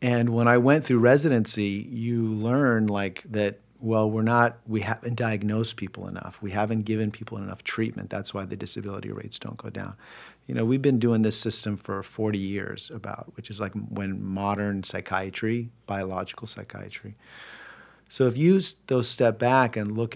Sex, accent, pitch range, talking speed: male, American, 100-120 Hz, 175 wpm